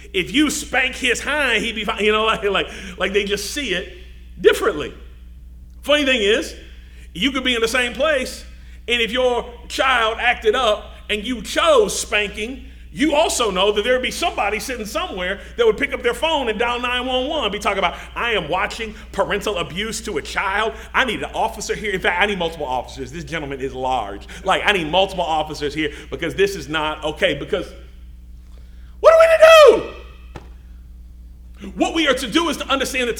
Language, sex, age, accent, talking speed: English, male, 40-59, American, 195 wpm